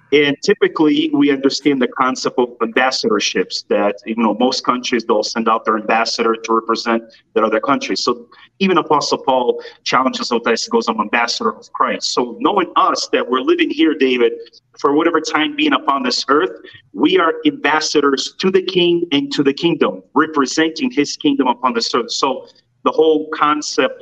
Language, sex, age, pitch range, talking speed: English, male, 30-49, 130-175 Hz, 175 wpm